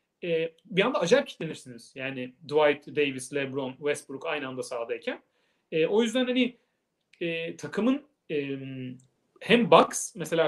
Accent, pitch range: native, 150-240 Hz